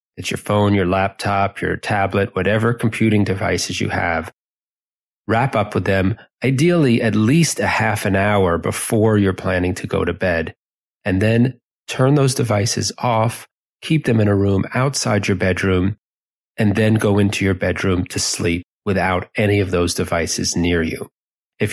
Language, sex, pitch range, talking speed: English, male, 95-120 Hz, 165 wpm